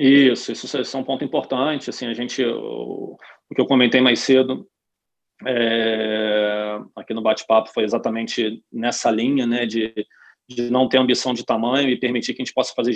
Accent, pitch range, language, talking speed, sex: Brazilian, 115-135 Hz, Portuguese, 160 wpm, male